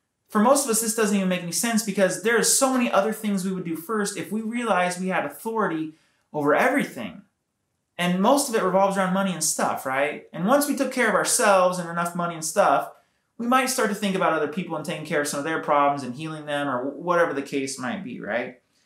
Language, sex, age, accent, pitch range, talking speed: English, male, 30-49, American, 155-215 Hz, 245 wpm